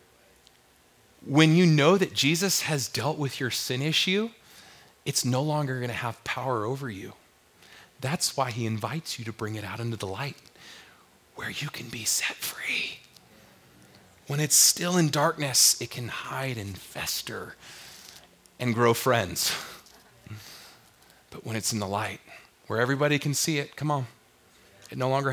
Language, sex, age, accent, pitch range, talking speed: English, male, 30-49, American, 105-145 Hz, 160 wpm